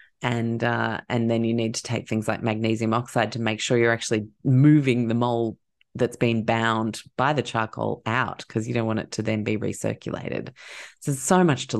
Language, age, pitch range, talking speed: English, 30-49, 115-160 Hz, 210 wpm